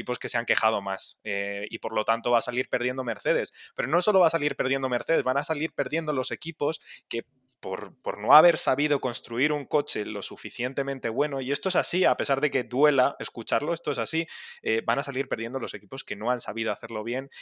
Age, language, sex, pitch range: 20-39, Spanish, male, 115-135 Hz